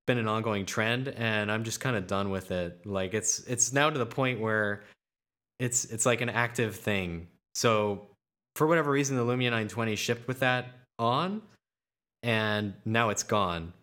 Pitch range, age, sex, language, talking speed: 105-130 Hz, 20-39, male, English, 175 wpm